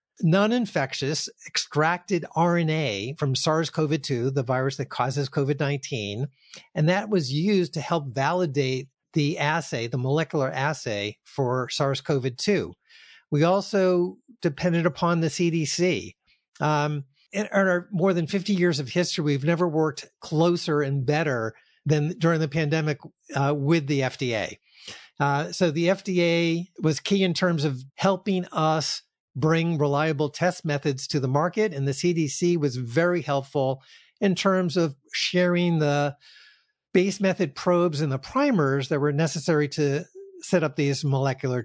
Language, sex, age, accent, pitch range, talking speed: English, male, 50-69, American, 140-175 Hz, 140 wpm